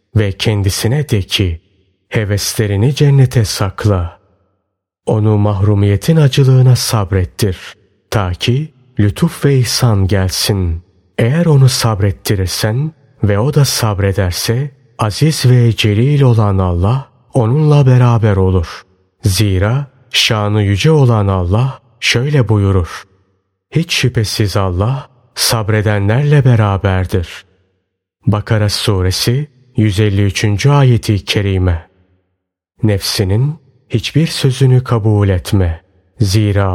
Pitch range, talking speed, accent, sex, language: 100-130 Hz, 90 wpm, native, male, Turkish